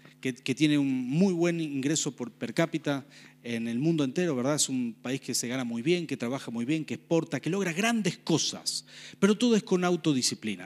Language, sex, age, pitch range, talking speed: Spanish, male, 40-59, 140-205 Hz, 210 wpm